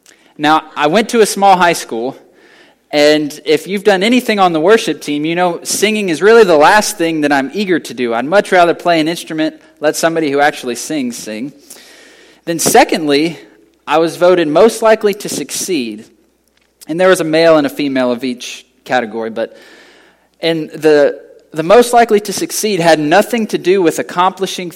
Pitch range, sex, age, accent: 150-205 Hz, male, 20-39, American